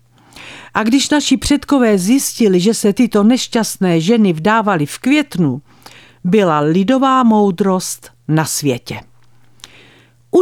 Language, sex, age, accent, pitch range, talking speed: Czech, female, 50-69, native, 150-230 Hz, 110 wpm